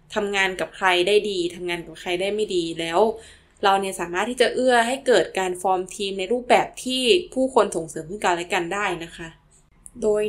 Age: 20-39